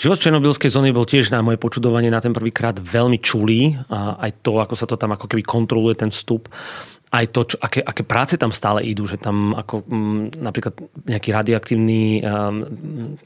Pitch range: 110-125 Hz